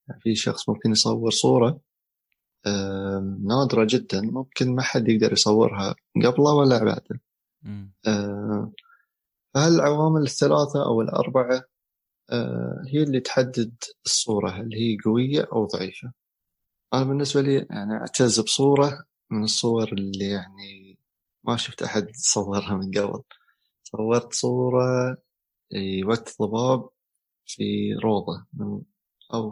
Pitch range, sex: 105-130 Hz, male